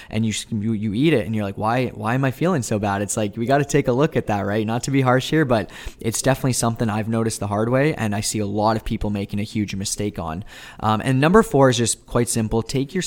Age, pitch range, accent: 20-39, 105-120 Hz, American